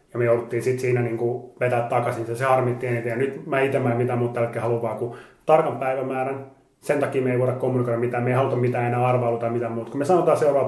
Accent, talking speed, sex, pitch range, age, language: native, 245 wpm, male, 125-140 Hz, 30-49, Finnish